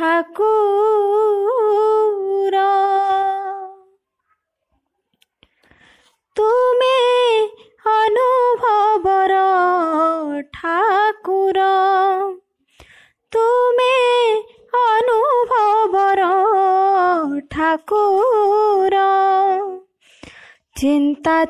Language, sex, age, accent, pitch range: English, female, 20-39, Indian, 365-440 Hz